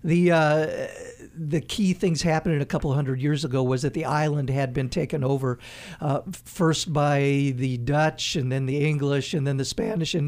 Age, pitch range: 50-69, 140-170 Hz